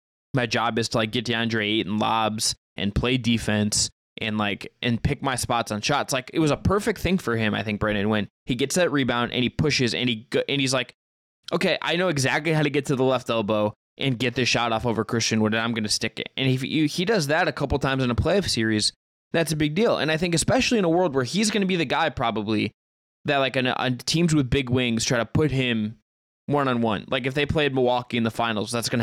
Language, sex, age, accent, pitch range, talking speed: English, male, 20-39, American, 110-145 Hz, 260 wpm